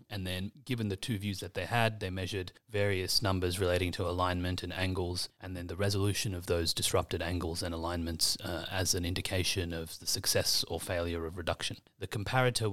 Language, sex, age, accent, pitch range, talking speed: English, male, 30-49, Australian, 90-105 Hz, 195 wpm